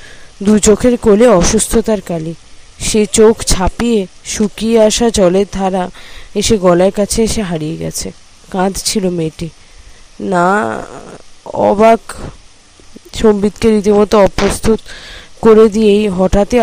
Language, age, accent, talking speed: Bengali, 20-39, native, 85 wpm